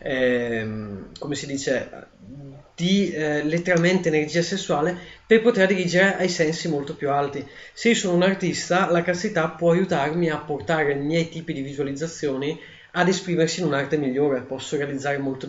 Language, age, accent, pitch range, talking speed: Italian, 30-49, native, 145-180 Hz, 160 wpm